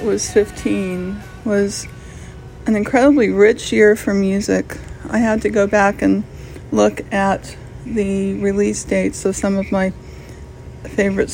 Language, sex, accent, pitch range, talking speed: English, female, American, 190-215 Hz, 130 wpm